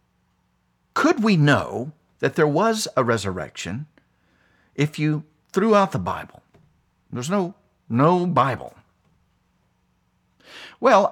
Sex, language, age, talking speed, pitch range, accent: male, English, 50-69, 105 wpm, 100-130 Hz, American